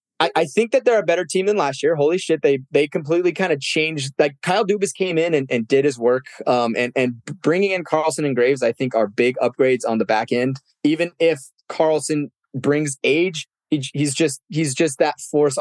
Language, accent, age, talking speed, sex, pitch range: English, American, 20-39, 225 wpm, male, 120-165 Hz